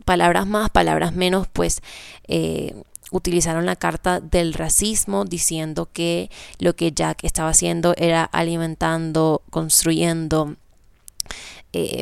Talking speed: 110 wpm